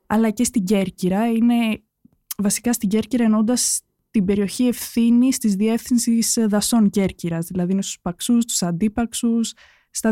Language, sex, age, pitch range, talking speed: Greek, female, 20-39, 190-235 Hz, 130 wpm